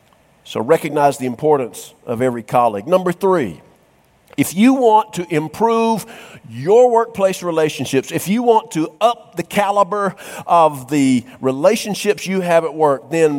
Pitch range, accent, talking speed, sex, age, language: 150-200 Hz, American, 145 wpm, male, 50-69, English